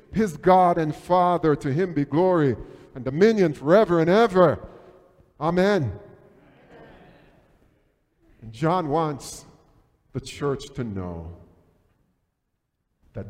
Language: English